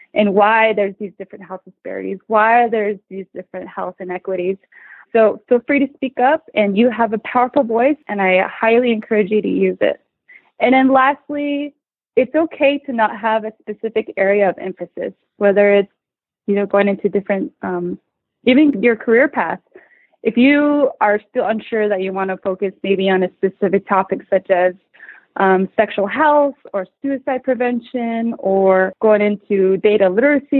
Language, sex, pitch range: English, female, 195-245 Hz